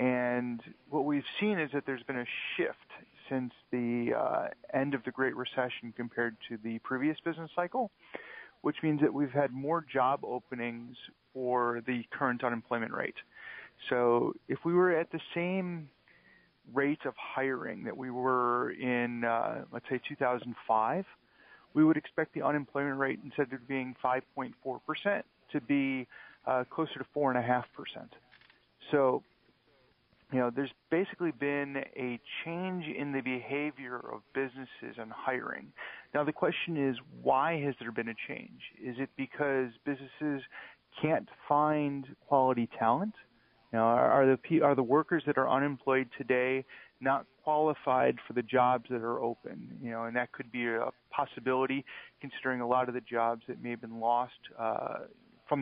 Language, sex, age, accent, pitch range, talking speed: English, male, 40-59, American, 120-145 Hz, 155 wpm